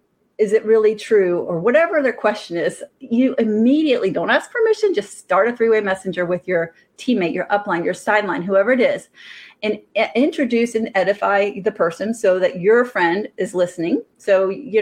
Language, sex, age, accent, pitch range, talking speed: English, female, 30-49, American, 190-235 Hz, 175 wpm